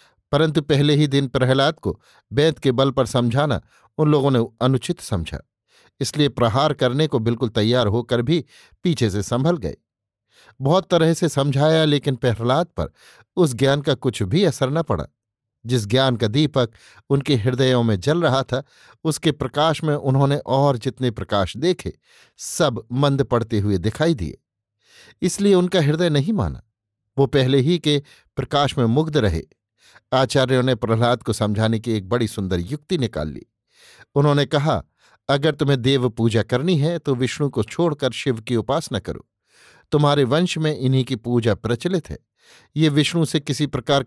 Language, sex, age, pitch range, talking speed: Hindi, male, 50-69, 115-150 Hz, 165 wpm